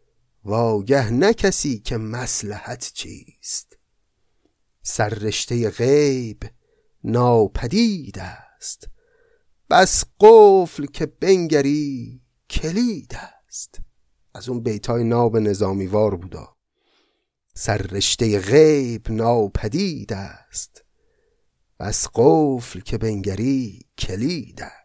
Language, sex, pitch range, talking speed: Persian, male, 110-175 Hz, 75 wpm